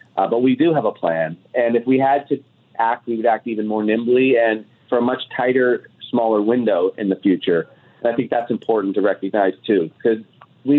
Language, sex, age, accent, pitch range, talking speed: English, male, 30-49, American, 110-130 Hz, 215 wpm